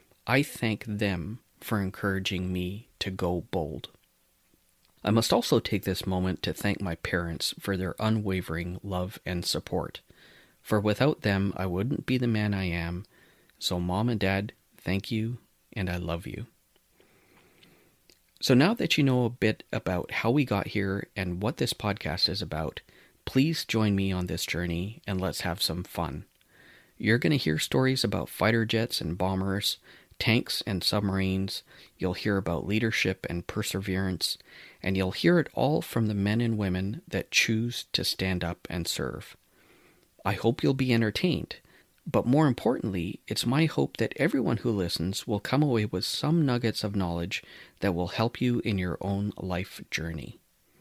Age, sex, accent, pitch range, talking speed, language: 30-49, male, American, 90-115 Hz, 170 wpm, English